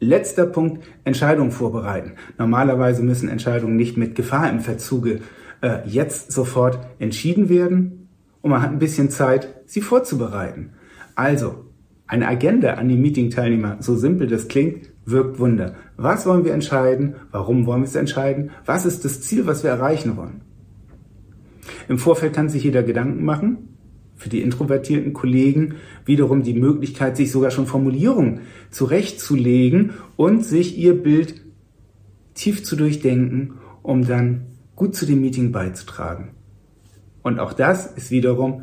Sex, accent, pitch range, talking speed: male, German, 115-145 Hz, 145 wpm